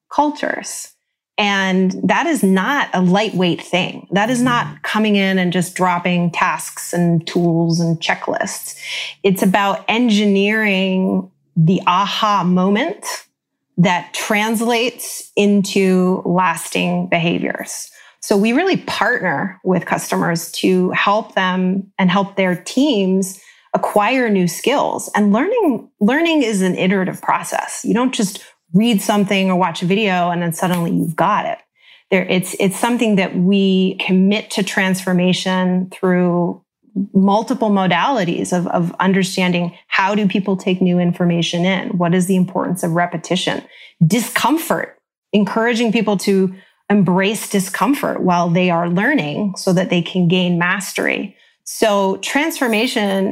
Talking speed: 130 wpm